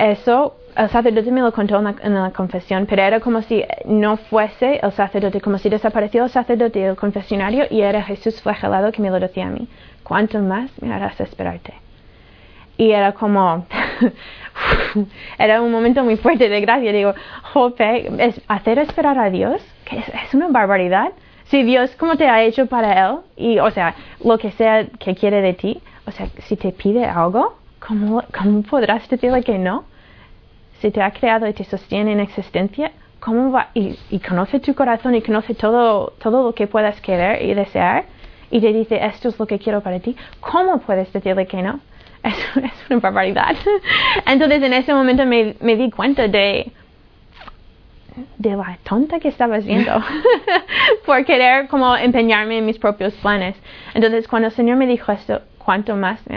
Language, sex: Spanish, female